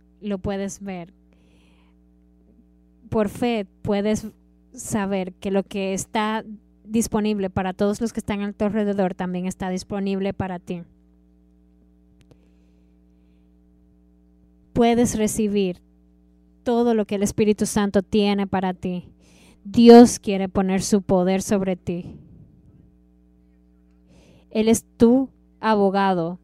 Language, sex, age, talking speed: Spanish, female, 20-39, 105 wpm